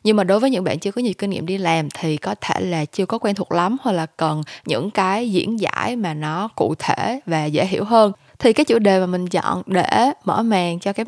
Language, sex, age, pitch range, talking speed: Vietnamese, female, 10-29, 175-220 Hz, 265 wpm